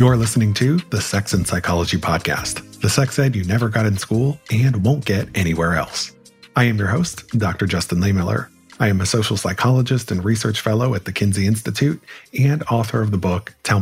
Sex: male